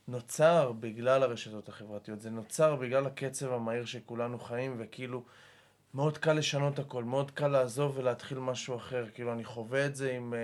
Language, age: Hebrew, 20-39